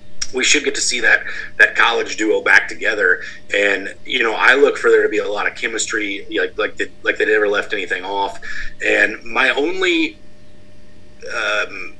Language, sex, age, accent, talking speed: English, male, 30-49, American, 185 wpm